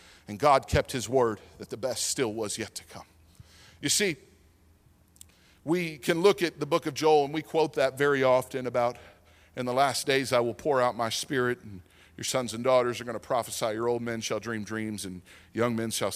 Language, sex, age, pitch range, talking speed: English, male, 40-59, 95-150 Hz, 220 wpm